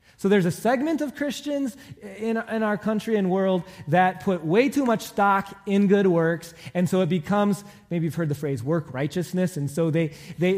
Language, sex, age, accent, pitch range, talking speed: English, male, 20-39, American, 155-210 Hz, 205 wpm